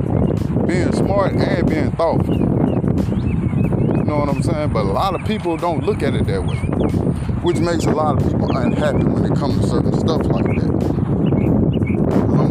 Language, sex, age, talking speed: English, male, 20-39, 175 wpm